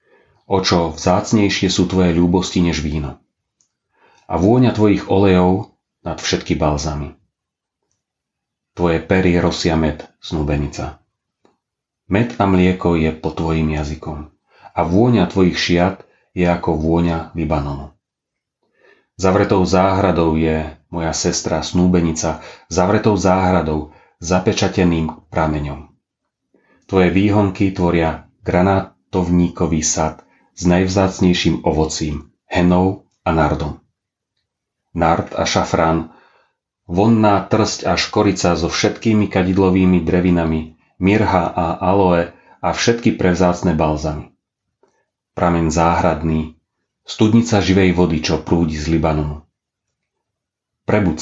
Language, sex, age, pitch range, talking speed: Slovak, male, 40-59, 80-95 Hz, 95 wpm